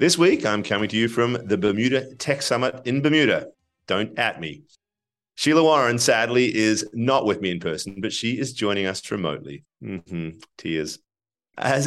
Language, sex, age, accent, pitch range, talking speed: English, male, 30-49, Australian, 95-120 Hz, 175 wpm